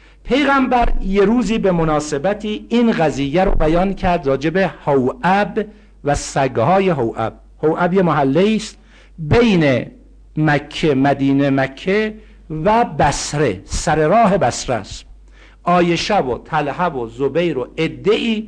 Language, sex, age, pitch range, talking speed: Persian, male, 60-79, 150-210 Hz, 120 wpm